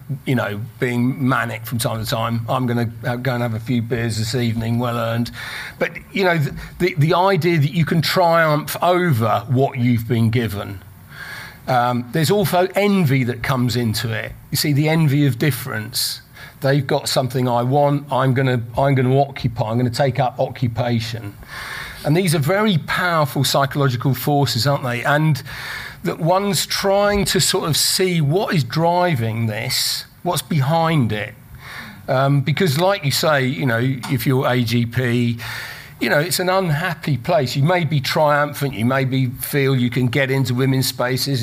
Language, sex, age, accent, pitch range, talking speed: English, male, 40-59, British, 120-150 Hz, 175 wpm